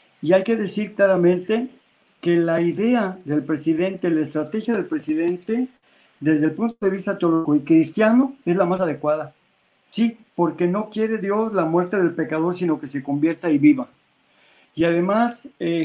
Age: 60-79